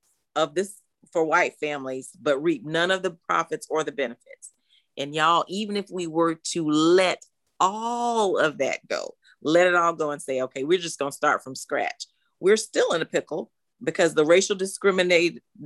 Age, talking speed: 40-59, 190 wpm